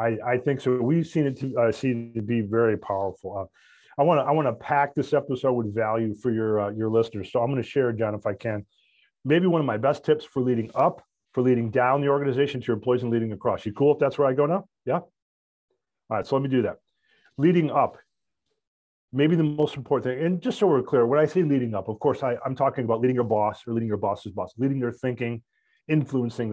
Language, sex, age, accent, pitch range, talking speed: English, male, 40-59, American, 110-135 Hz, 250 wpm